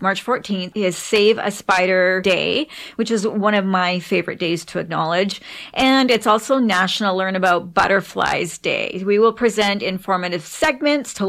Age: 40-59